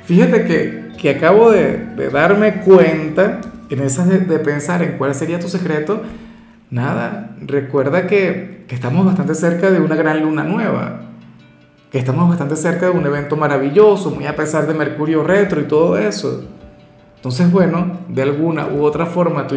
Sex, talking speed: male, 170 wpm